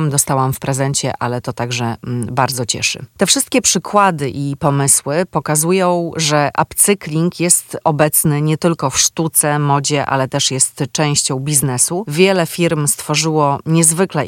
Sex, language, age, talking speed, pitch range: female, Polish, 30-49, 140 wpm, 140-165 Hz